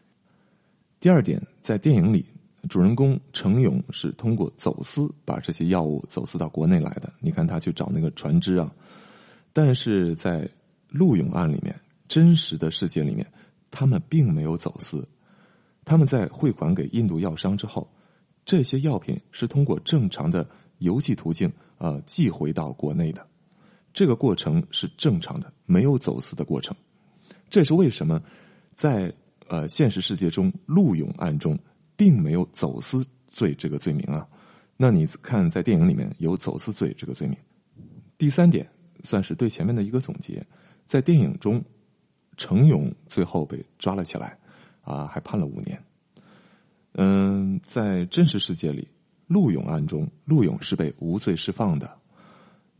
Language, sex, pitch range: Chinese, male, 130-180 Hz